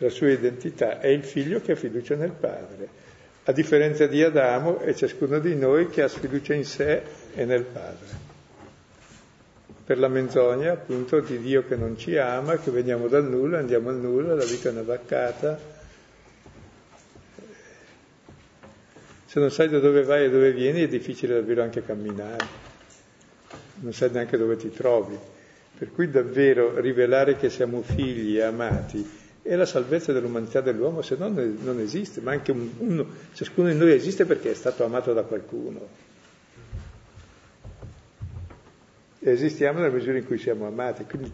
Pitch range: 120-165 Hz